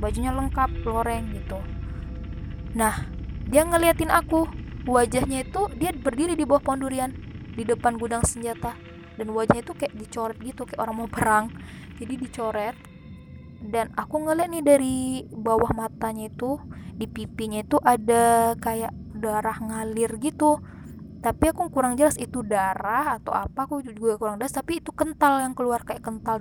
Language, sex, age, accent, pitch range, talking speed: Indonesian, female, 10-29, native, 215-265 Hz, 150 wpm